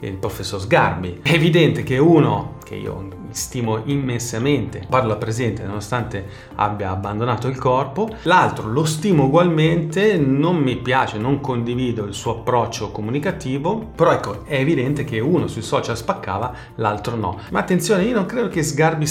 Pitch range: 110-150 Hz